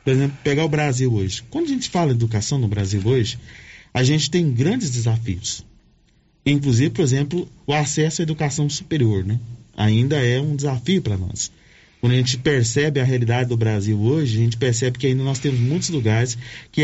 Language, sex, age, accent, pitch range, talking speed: Portuguese, male, 40-59, Brazilian, 115-155 Hz, 190 wpm